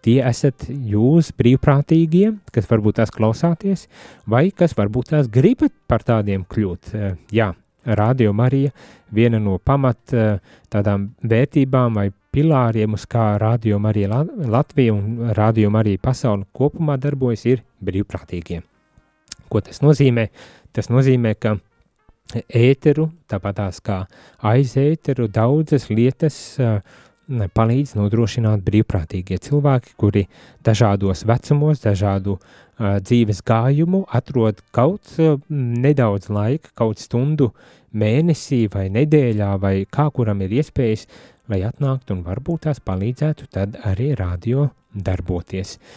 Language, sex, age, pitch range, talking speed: English, male, 30-49, 100-130 Hz, 110 wpm